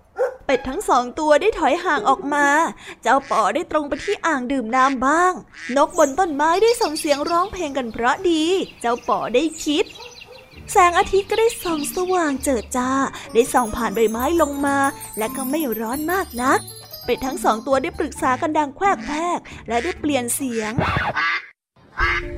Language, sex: Thai, female